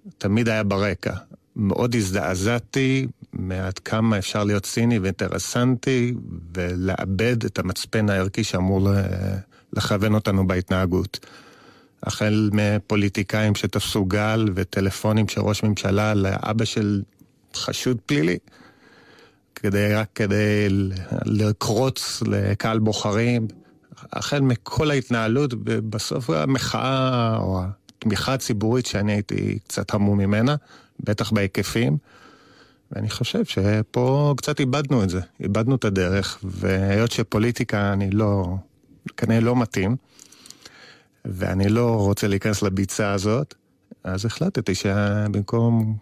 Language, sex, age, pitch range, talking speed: Hebrew, male, 30-49, 100-115 Hz, 100 wpm